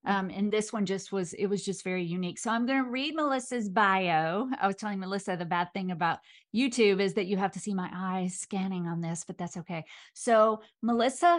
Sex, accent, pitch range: female, American, 185-225 Hz